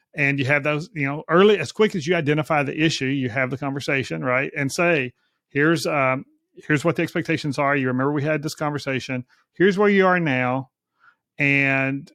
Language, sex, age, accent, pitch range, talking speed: English, male, 40-59, American, 140-175 Hz, 200 wpm